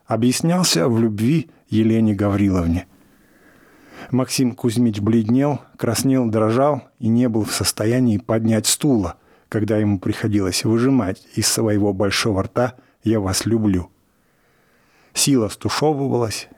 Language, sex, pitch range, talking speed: English, male, 105-125 Hz, 110 wpm